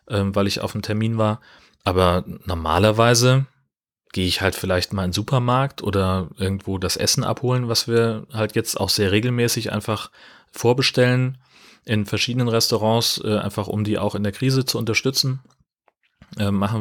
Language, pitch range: German, 95-110 Hz